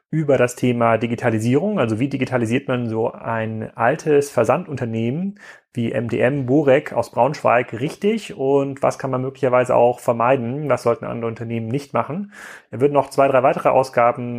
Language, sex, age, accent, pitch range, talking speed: German, male, 30-49, German, 120-145 Hz, 160 wpm